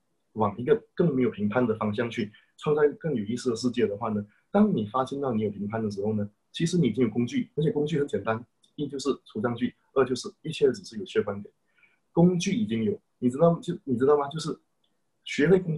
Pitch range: 110-170 Hz